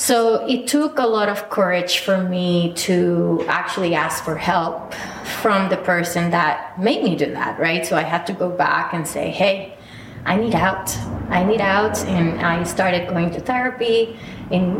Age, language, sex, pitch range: 20-39, English, female, 180-215 Hz